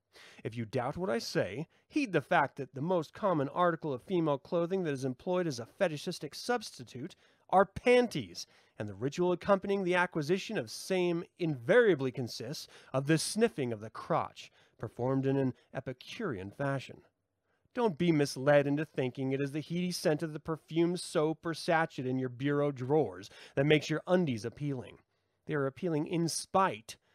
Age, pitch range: 30-49, 130-170 Hz